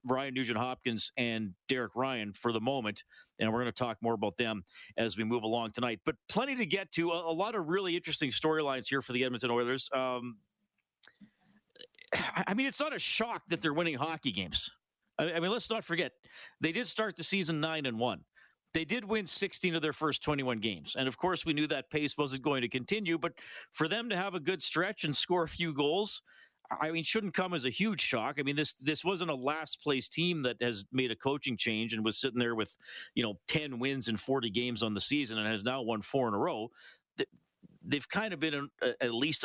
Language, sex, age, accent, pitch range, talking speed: English, male, 40-59, American, 115-170 Hz, 230 wpm